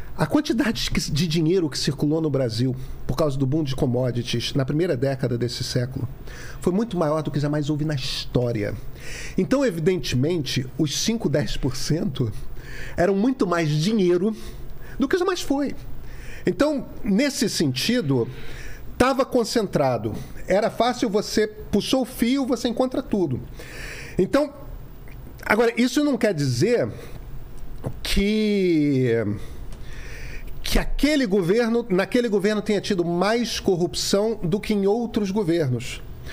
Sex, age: male, 40-59